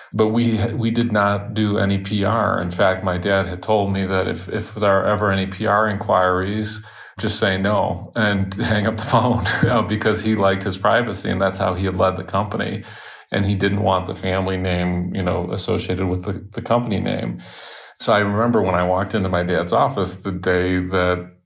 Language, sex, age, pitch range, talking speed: English, male, 40-59, 95-110 Hz, 210 wpm